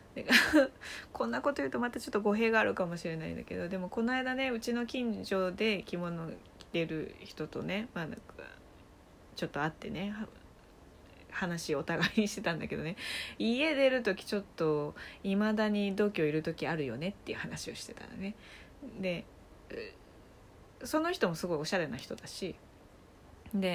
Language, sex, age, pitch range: Japanese, female, 20-39, 160-235 Hz